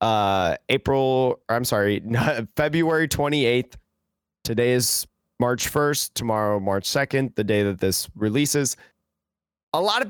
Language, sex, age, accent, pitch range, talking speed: English, male, 20-39, American, 120-175 Hz, 125 wpm